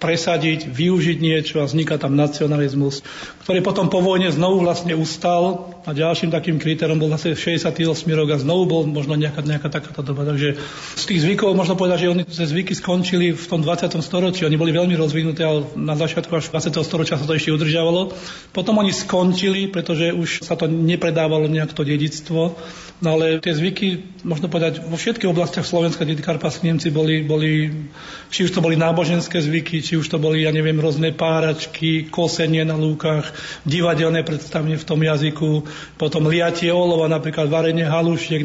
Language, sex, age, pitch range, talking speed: Slovak, male, 40-59, 155-170 Hz, 170 wpm